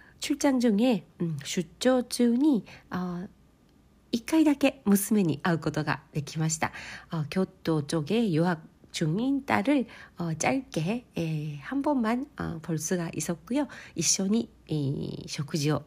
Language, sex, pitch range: Korean, female, 160-215 Hz